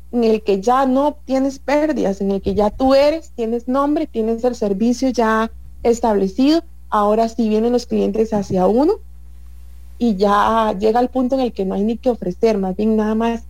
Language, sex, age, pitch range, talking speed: English, female, 30-49, 195-255 Hz, 195 wpm